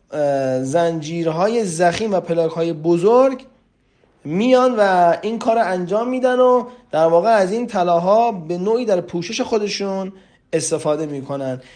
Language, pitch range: Persian, 165-220 Hz